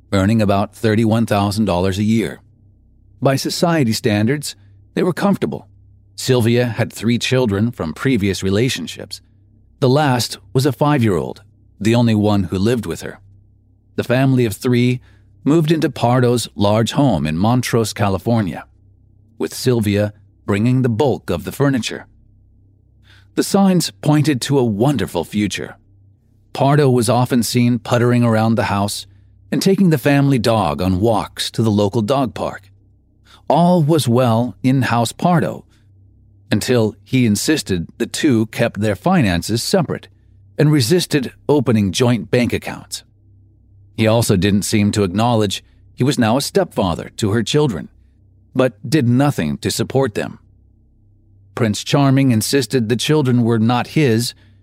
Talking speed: 140 wpm